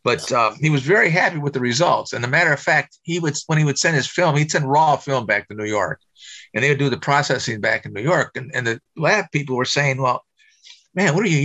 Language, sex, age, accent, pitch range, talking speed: English, male, 50-69, American, 125-155 Hz, 280 wpm